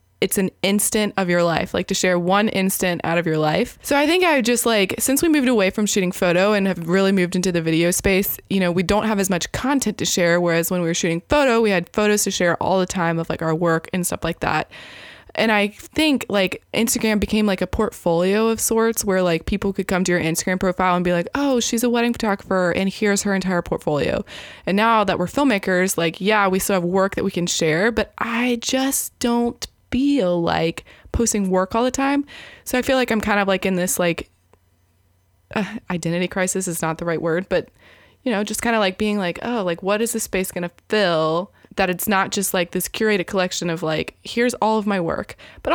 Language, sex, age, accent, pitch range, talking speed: English, female, 20-39, American, 175-225 Hz, 235 wpm